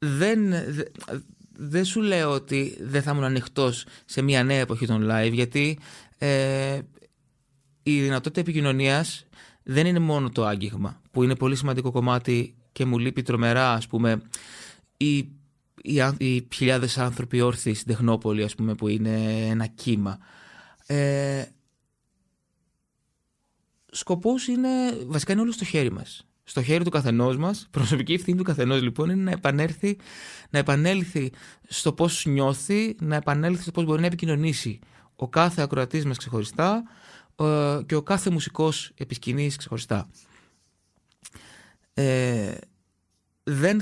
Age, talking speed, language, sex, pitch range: 20-39, 125 wpm, Greek, male, 120-155 Hz